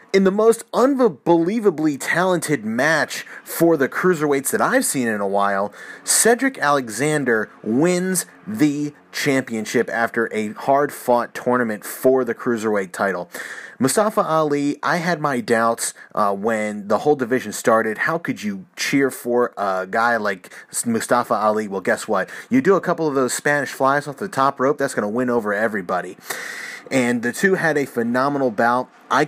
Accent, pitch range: American, 110-155 Hz